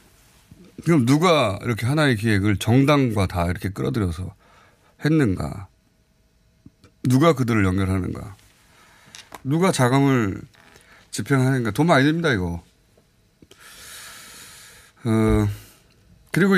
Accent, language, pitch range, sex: native, Korean, 95-130 Hz, male